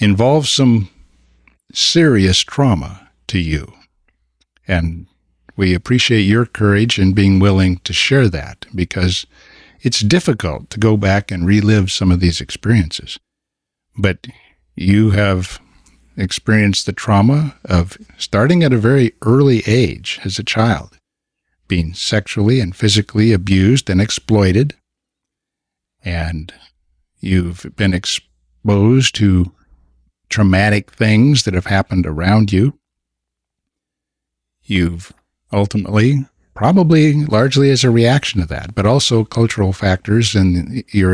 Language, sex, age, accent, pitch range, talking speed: English, male, 60-79, American, 90-110 Hz, 115 wpm